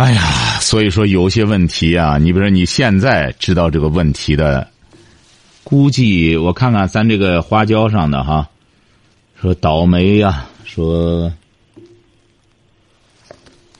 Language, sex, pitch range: Chinese, male, 85-120 Hz